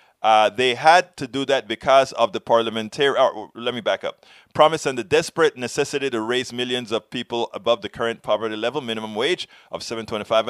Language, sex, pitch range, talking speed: English, male, 110-145 Hz, 200 wpm